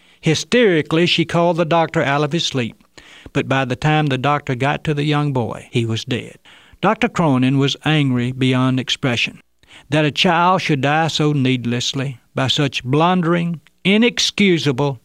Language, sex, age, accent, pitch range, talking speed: English, male, 60-79, American, 120-150 Hz, 160 wpm